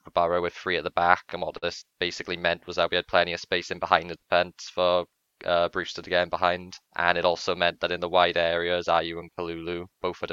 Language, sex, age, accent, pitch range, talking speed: English, male, 20-39, British, 85-90 Hz, 245 wpm